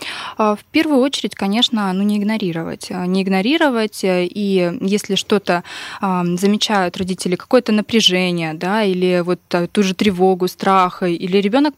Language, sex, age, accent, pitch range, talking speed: Russian, female, 20-39, native, 180-215 Hz, 125 wpm